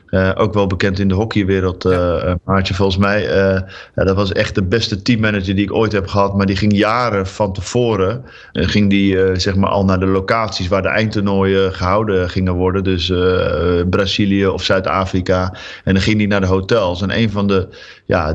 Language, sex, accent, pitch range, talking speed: Dutch, male, Dutch, 95-105 Hz, 205 wpm